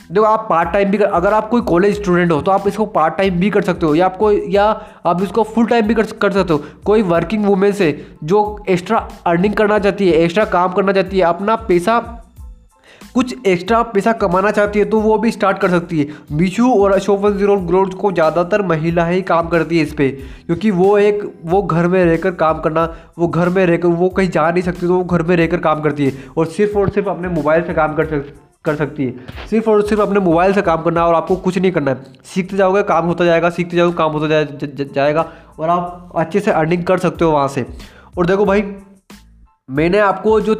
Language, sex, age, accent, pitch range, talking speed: Hindi, male, 20-39, native, 165-205 Hz, 230 wpm